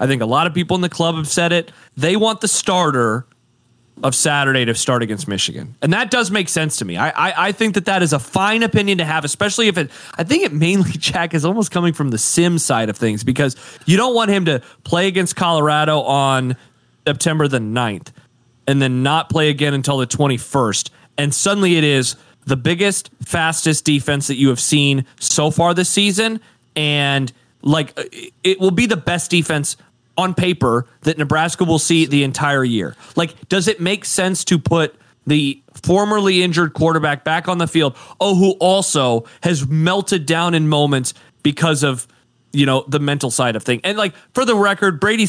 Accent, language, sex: American, English, male